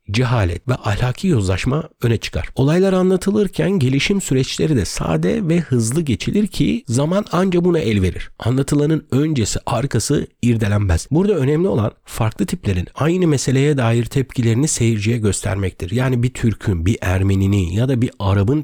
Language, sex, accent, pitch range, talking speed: Turkish, male, native, 100-140 Hz, 145 wpm